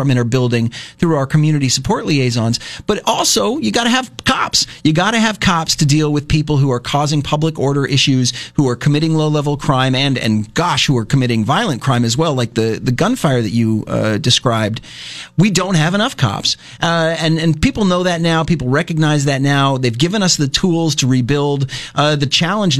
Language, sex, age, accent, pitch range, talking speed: English, male, 40-59, American, 130-160 Hz, 205 wpm